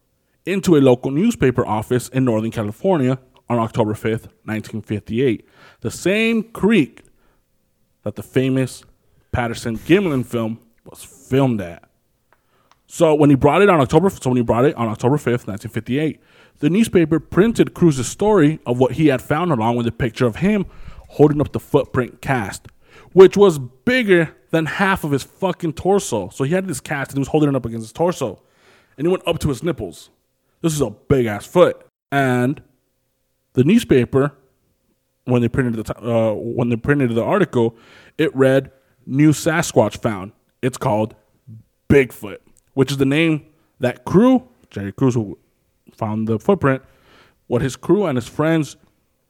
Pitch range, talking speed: 115-155 Hz, 165 wpm